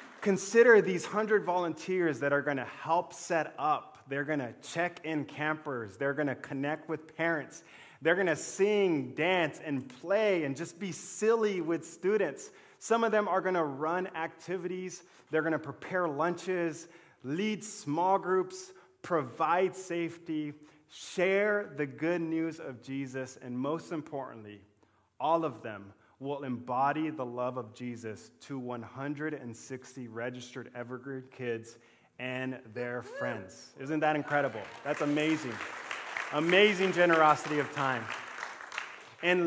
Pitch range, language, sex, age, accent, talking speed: 130-175 Hz, English, male, 30-49, American, 135 wpm